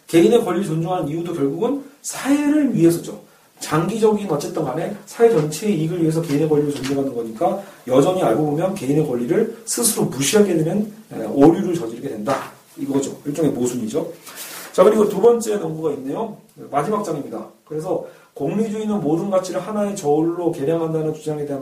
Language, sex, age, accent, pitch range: Korean, male, 40-59, native, 155-210 Hz